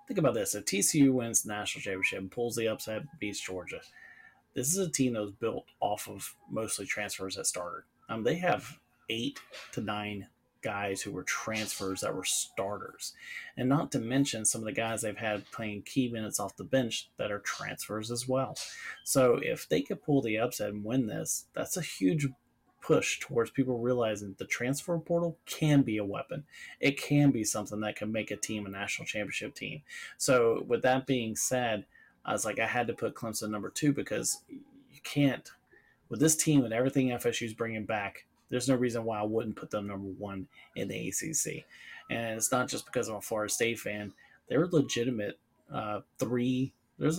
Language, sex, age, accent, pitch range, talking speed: English, male, 30-49, American, 105-135 Hz, 195 wpm